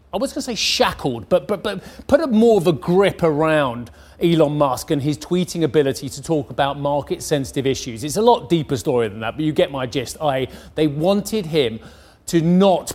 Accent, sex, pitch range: British, male, 125-160 Hz